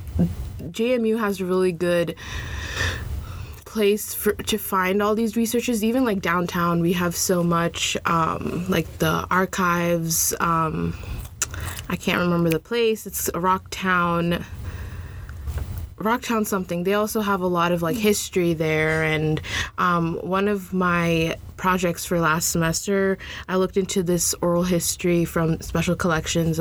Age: 20-39